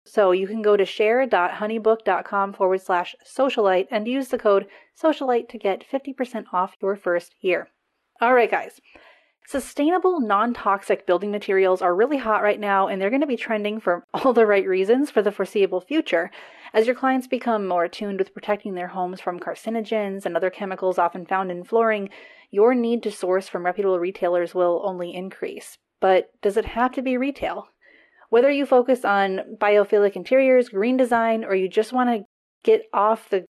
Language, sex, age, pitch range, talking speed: English, female, 30-49, 190-235 Hz, 175 wpm